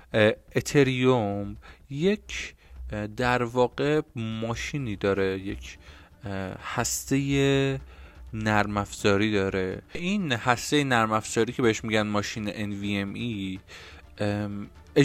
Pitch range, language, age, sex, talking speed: 100-130 Hz, Persian, 20-39, male, 80 wpm